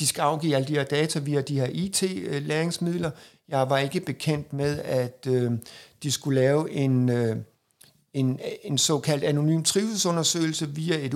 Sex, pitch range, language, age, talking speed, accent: male, 145-185 Hz, Danish, 60-79, 160 wpm, native